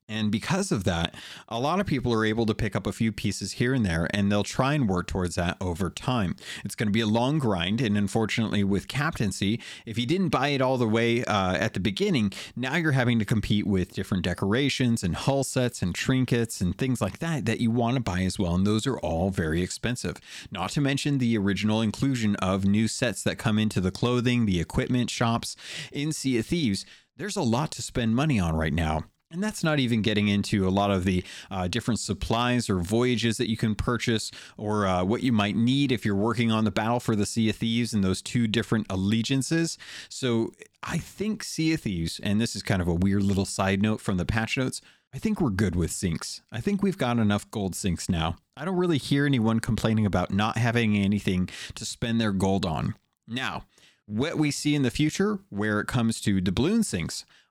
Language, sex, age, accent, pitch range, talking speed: English, male, 30-49, American, 100-125 Hz, 225 wpm